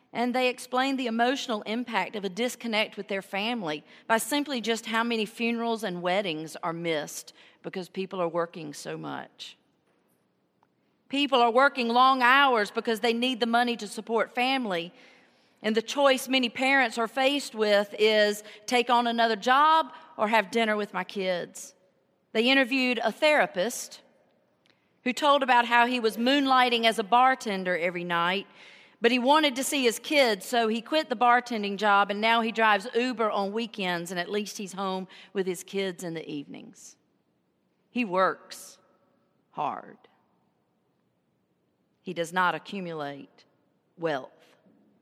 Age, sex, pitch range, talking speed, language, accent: 40-59, female, 190-250 Hz, 155 wpm, English, American